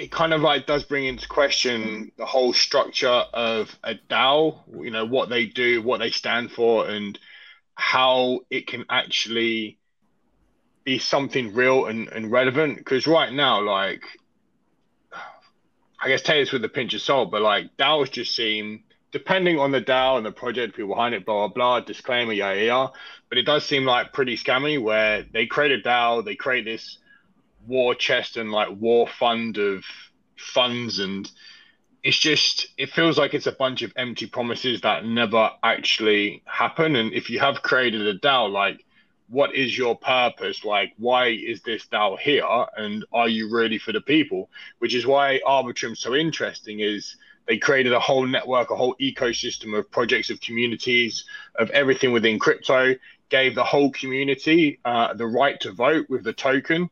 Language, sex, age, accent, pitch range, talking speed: English, male, 20-39, British, 115-140 Hz, 175 wpm